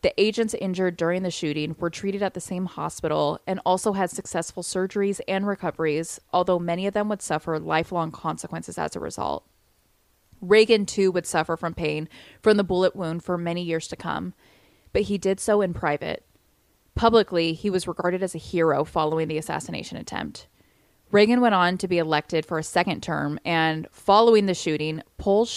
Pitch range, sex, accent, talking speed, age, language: 160-200 Hz, female, American, 180 wpm, 20-39, English